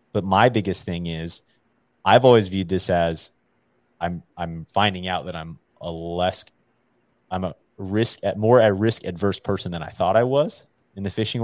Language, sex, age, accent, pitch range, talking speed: English, male, 30-49, American, 85-100 Hz, 185 wpm